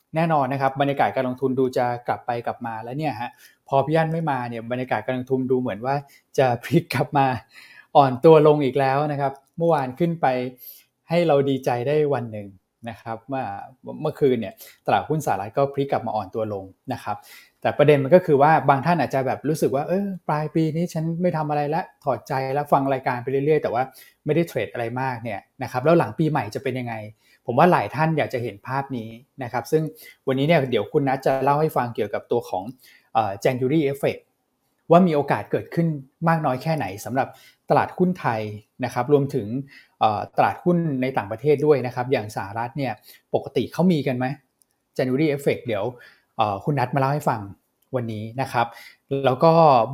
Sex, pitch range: male, 125-150 Hz